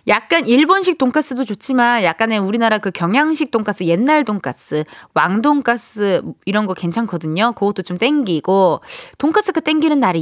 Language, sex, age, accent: Korean, female, 20-39, native